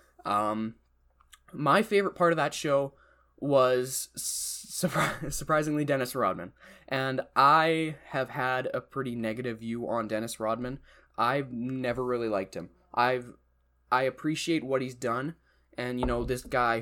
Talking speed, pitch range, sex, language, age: 135 wpm, 120-145 Hz, male, English, 20-39